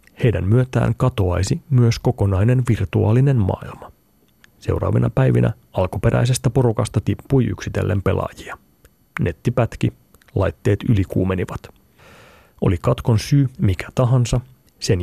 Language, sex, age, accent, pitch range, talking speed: Finnish, male, 30-49, native, 100-125 Hz, 90 wpm